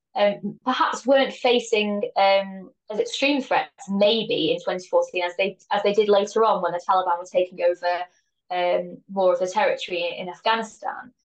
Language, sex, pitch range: English, female, 180-235 Hz